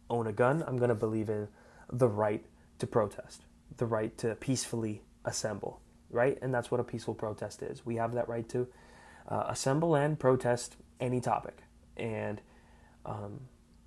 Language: English